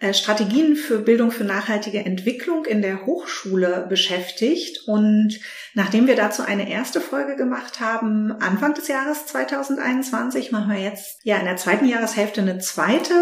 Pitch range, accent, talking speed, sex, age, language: 200-255 Hz, German, 150 wpm, female, 40-59, German